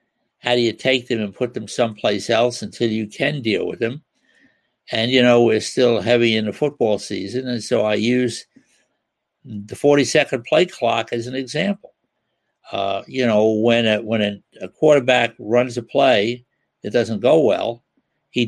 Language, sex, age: English, male, 60-79